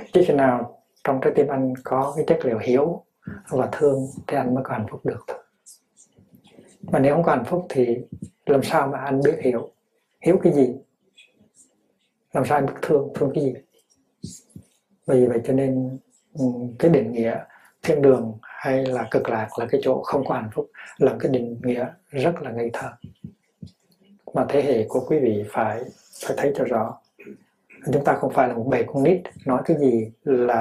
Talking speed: 190 wpm